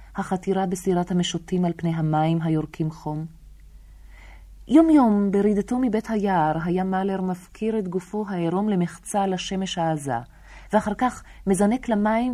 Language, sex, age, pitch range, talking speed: Hebrew, female, 30-49, 140-200 Hz, 120 wpm